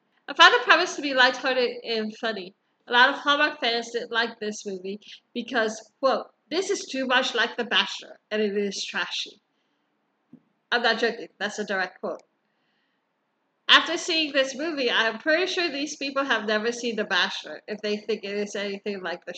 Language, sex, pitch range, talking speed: English, female, 215-270 Hz, 185 wpm